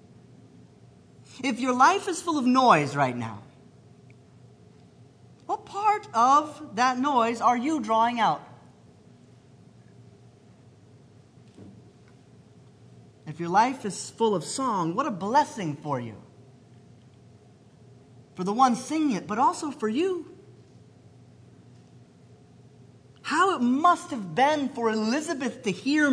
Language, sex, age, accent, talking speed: English, male, 30-49, American, 110 wpm